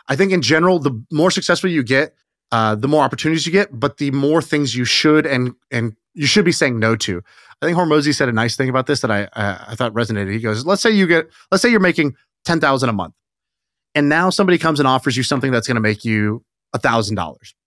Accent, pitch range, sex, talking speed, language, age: American, 130-165 Hz, male, 250 wpm, English, 30-49